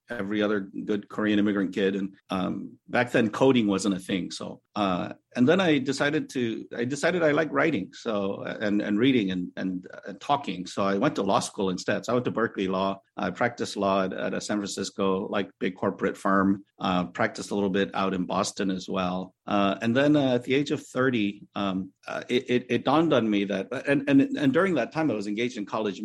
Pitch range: 100-125 Hz